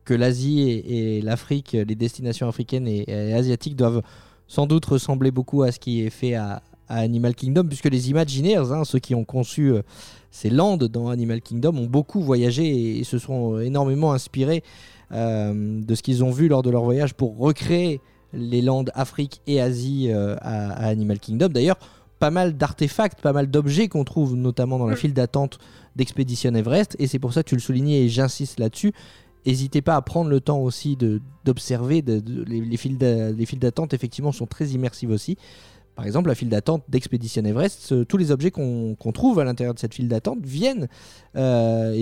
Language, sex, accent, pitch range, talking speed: French, male, French, 115-145 Hz, 195 wpm